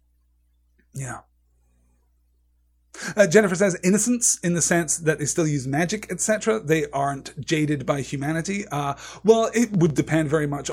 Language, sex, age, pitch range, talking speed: English, male, 30-49, 130-155 Hz, 145 wpm